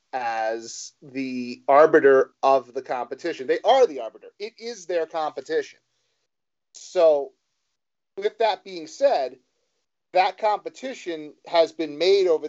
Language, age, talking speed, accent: English, 40-59, 120 wpm, American